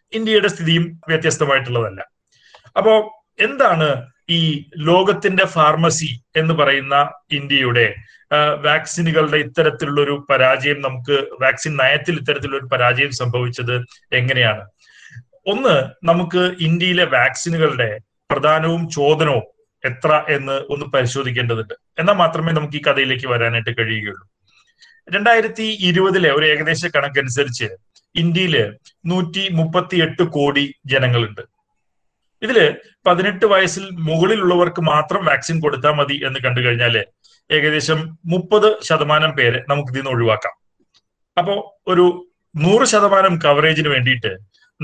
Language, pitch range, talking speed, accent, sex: Malayalam, 135-180 Hz, 100 wpm, native, male